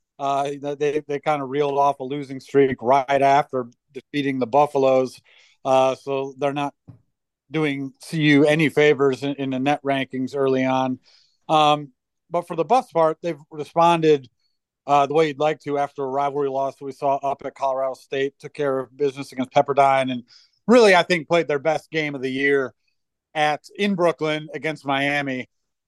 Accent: American